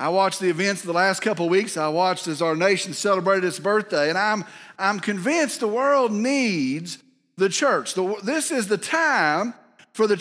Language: English